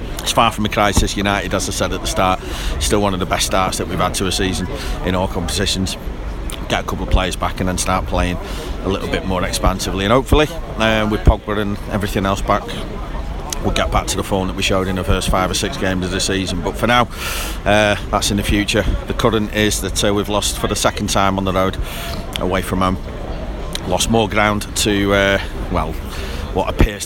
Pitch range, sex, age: 95-105 Hz, male, 30-49